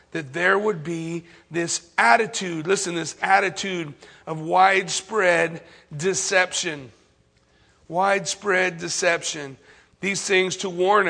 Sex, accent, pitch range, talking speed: male, American, 185-255 Hz, 95 wpm